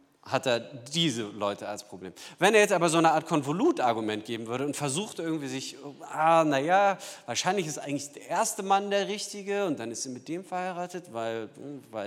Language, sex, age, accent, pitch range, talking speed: German, male, 40-59, German, 125-185 Hz, 200 wpm